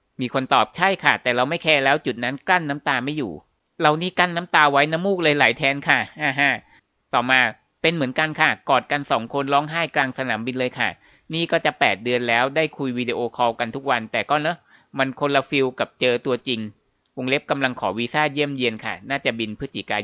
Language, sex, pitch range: Thai, male, 115-145 Hz